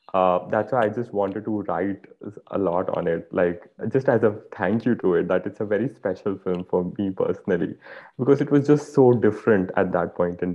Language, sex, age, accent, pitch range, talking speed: Hindi, male, 20-39, native, 95-115 Hz, 220 wpm